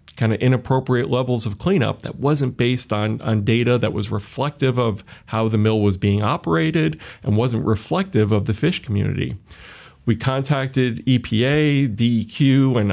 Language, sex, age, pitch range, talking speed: English, male, 40-59, 110-140 Hz, 160 wpm